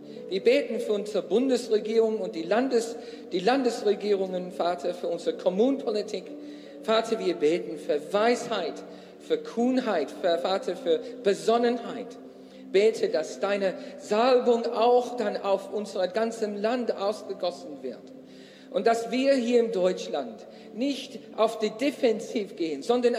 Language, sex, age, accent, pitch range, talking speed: German, male, 50-69, German, 200-240 Hz, 125 wpm